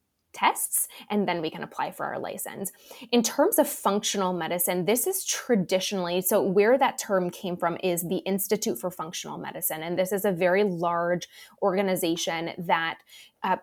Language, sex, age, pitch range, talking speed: English, female, 20-39, 180-230 Hz, 165 wpm